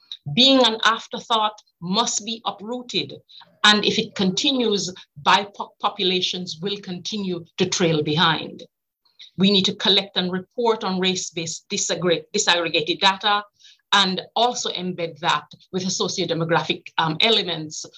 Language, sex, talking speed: English, female, 115 wpm